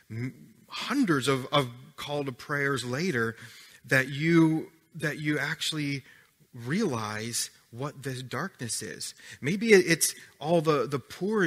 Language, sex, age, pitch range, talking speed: English, male, 30-49, 120-155 Hz, 120 wpm